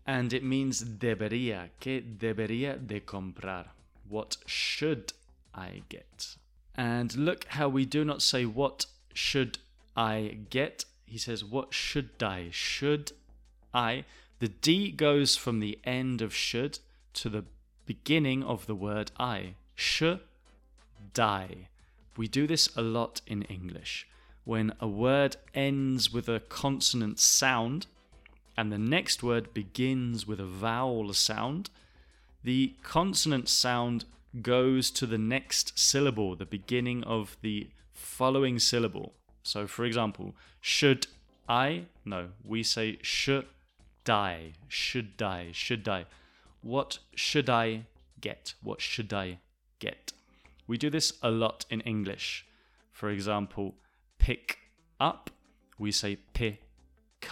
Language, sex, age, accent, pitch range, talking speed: English, male, 20-39, British, 100-130 Hz, 125 wpm